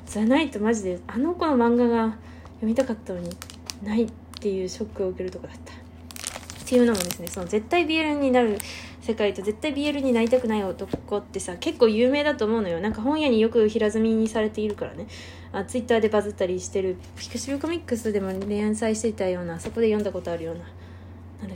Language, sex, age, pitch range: Japanese, female, 20-39, 180-280 Hz